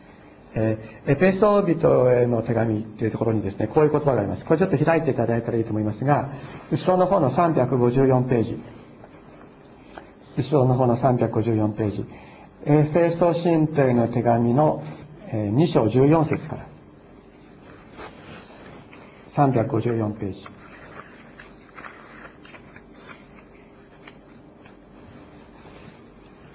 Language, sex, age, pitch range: Japanese, male, 50-69, 120-155 Hz